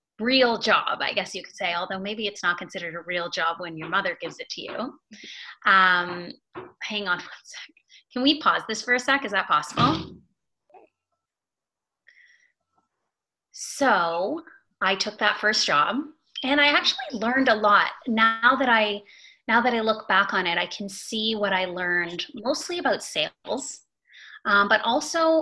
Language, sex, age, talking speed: English, female, 30-49, 165 wpm